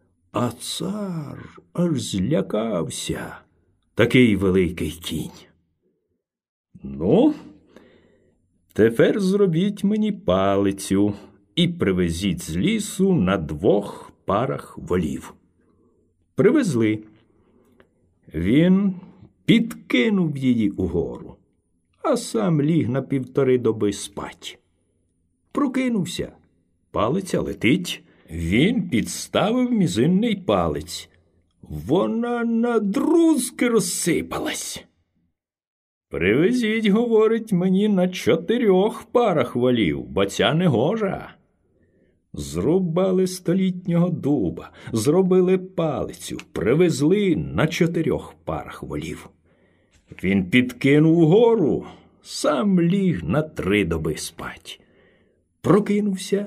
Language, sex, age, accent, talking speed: Ukrainian, male, 60-79, native, 80 wpm